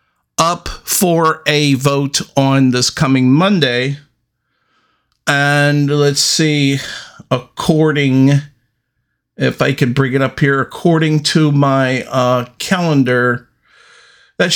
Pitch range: 120-150 Hz